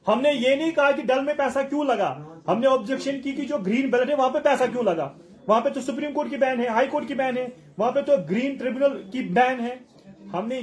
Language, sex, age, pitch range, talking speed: Urdu, male, 30-49, 200-265 Hz, 150 wpm